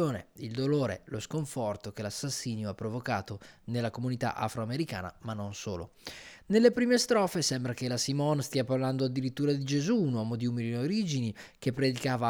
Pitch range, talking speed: 120-150 Hz, 160 wpm